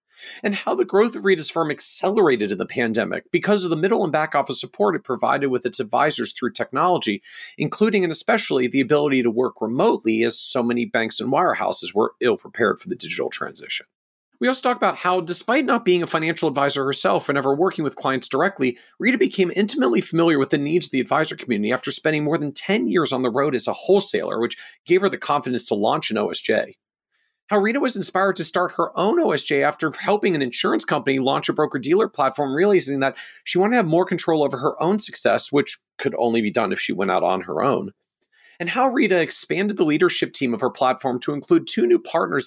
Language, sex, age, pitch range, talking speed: English, male, 40-59, 135-195 Hz, 215 wpm